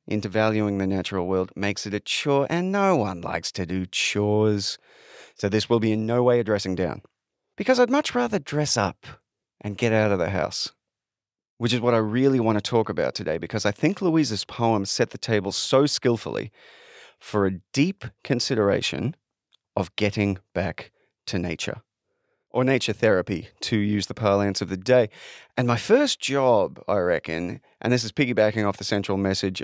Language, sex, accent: English, male, Australian